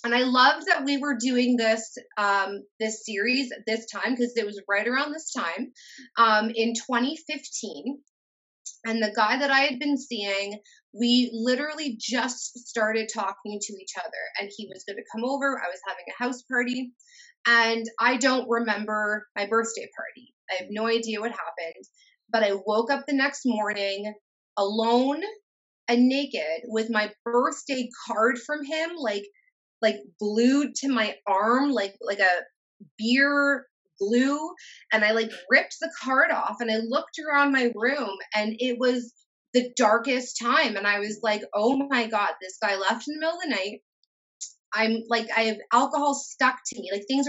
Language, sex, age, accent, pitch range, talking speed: English, female, 30-49, American, 215-270 Hz, 175 wpm